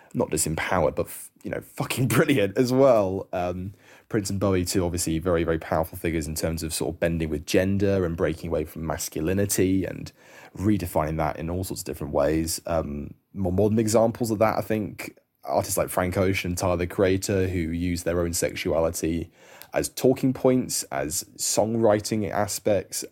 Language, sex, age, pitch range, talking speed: English, male, 20-39, 80-100 Hz, 175 wpm